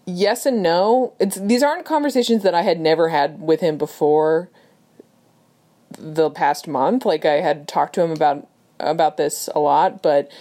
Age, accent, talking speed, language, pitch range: 20-39, American, 175 wpm, English, 155-200 Hz